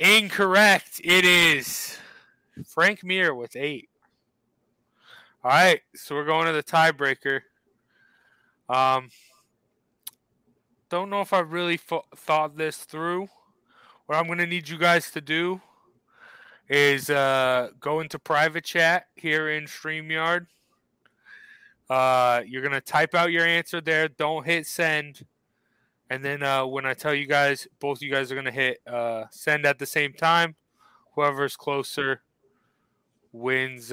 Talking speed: 135 wpm